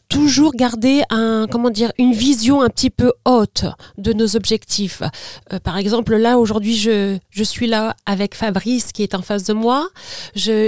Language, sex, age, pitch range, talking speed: French, female, 40-59, 220-255 Hz, 180 wpm